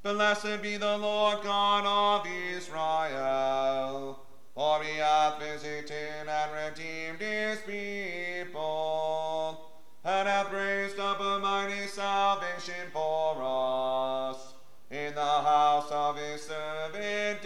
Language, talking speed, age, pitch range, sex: English, 105 wpm, 30-49, 145-195 Hz, male